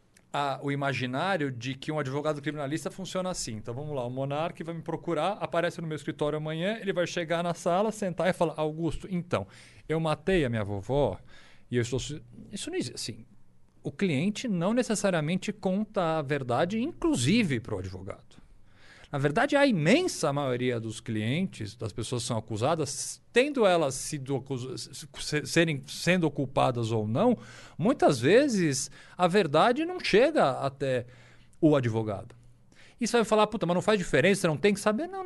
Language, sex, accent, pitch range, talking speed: Portuguese, male, Brazilian, 125-190 Hz, 170 wpm